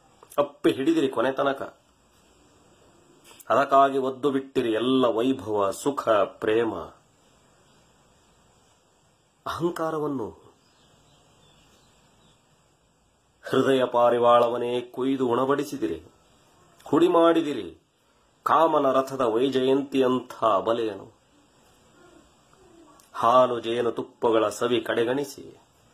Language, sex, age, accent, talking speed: Kannada, male, 30-49, native, 60 wpm